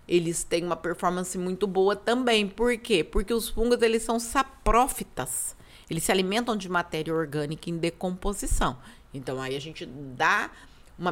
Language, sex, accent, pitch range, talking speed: Portuguese, female, Brazilian, 180-235 Hz, 155 wpm